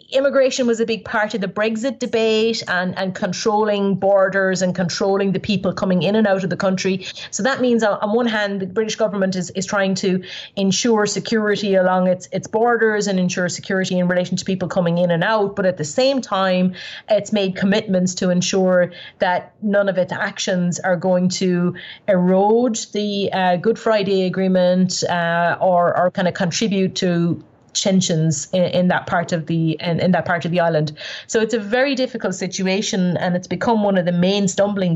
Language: English